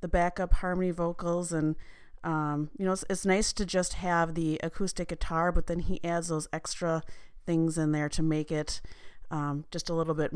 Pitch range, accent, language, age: 155-180 Hz, American, English, 30-49